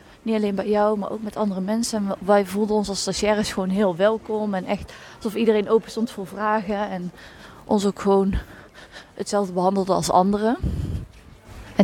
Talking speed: 180 wpm